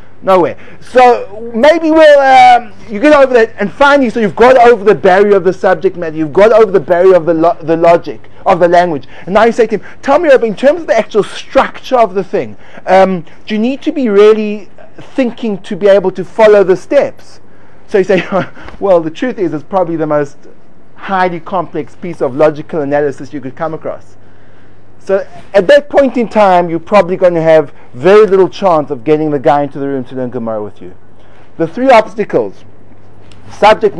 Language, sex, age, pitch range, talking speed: English, male, 30-49, 175-245 Hz, 210 wpm